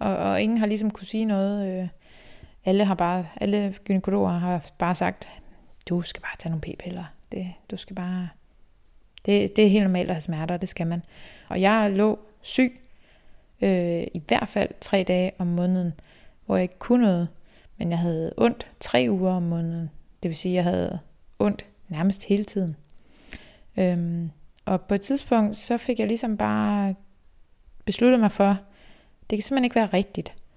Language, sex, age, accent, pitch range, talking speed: Danish, female, 20-39, native, 175-205 Hz, 175 wpm